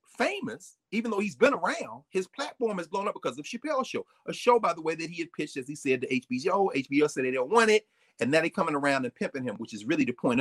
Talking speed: 275 wpm